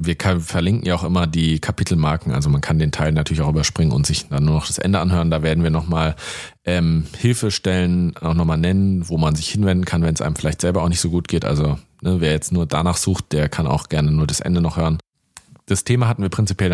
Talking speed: 235 wpm